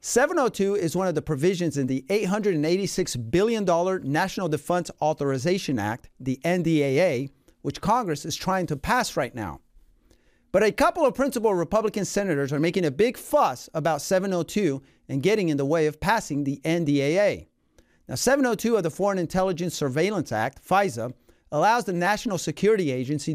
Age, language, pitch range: 40-59, English, 145-200 Hz